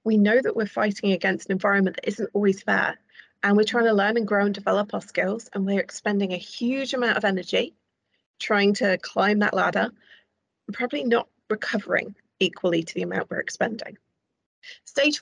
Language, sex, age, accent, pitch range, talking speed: English, female, 30-49, British, 180-225 Hz, 180 wpm